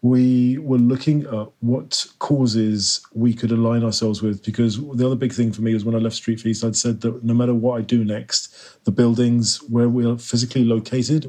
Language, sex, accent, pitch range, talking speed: English, male, British, 110-120 Hz, 215 wpm